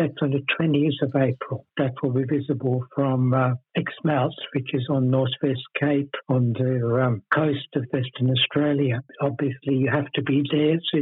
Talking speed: 165 wpm